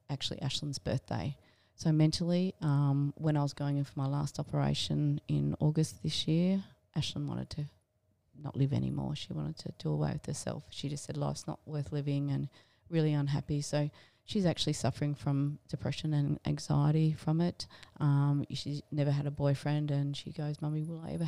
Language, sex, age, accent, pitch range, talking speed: English, female, 30-49, Australian, 140-165 Hz, 185 wpm